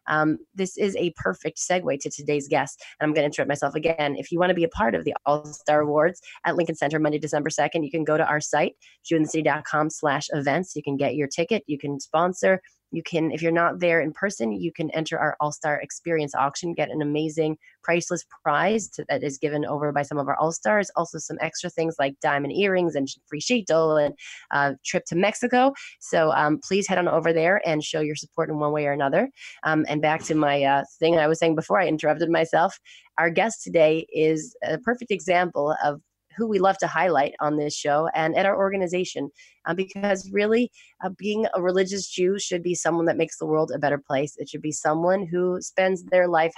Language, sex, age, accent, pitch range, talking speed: English, female, 20-39, American, 150-180 Hz, 225 wpm